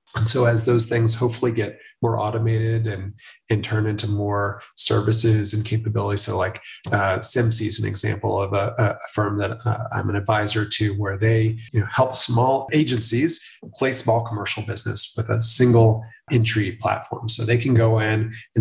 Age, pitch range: 30-49, 110-120 Hz